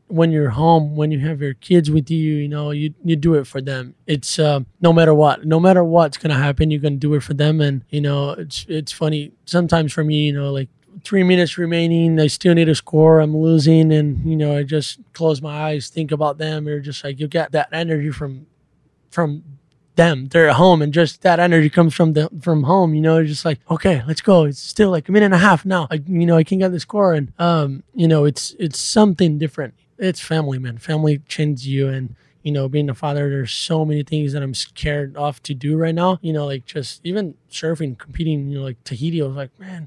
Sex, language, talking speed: male, English, 240 wpm